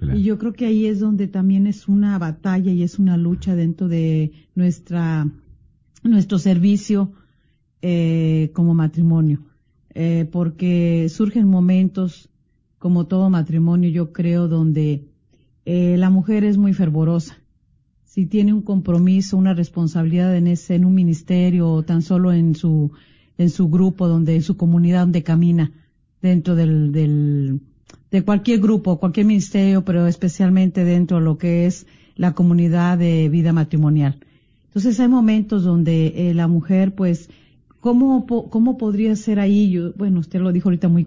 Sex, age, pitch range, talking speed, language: female, 40-59, 165-195 Hz, 150 wpm, Spanish